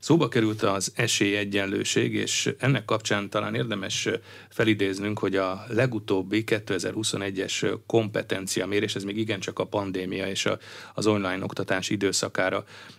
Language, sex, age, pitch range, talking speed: Hungarian, male, 30-49, 95-110 Hz, 120 wpm